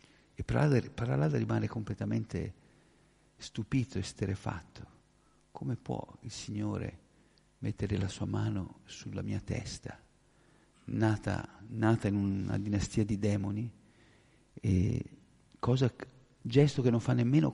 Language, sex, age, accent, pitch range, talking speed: Italian, male, 50-69, native, 100-125 Hz, 125 wpm